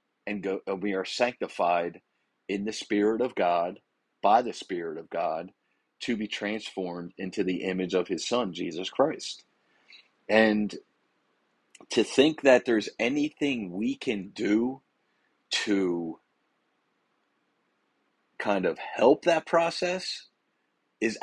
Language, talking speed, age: English, 120 wpm, 40-59